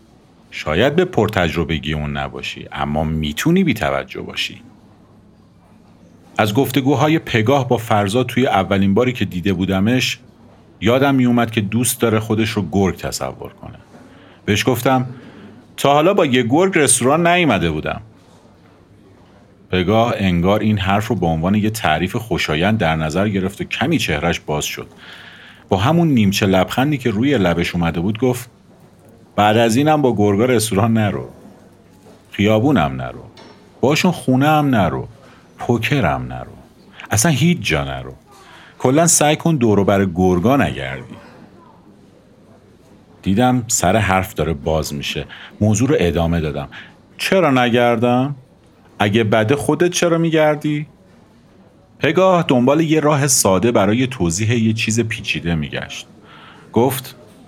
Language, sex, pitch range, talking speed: Persian, male, 95-130 Hz, 130 wpm